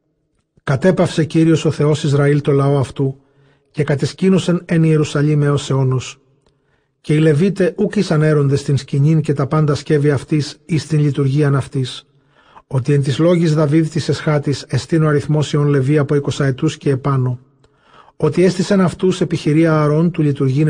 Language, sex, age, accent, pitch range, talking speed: Greek, male, 40-59, native, 145-160 Hz, 155 wpm